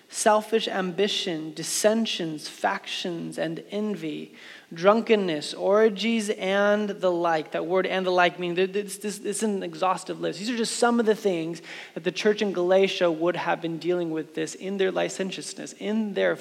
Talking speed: 160 wpm